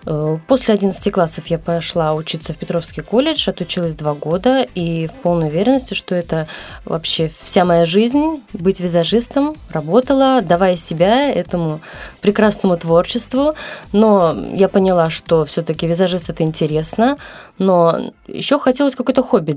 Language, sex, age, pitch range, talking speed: Russian, female, 20-39, 170-245 Hz, 130 wpm